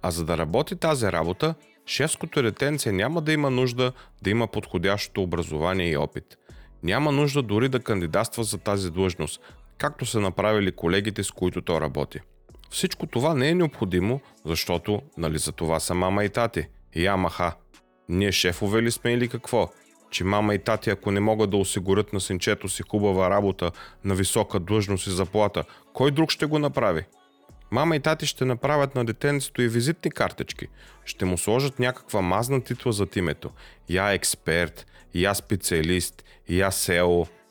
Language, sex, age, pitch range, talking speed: Bulgarian, male, 30-49, 90-130 Hz, 165 wpm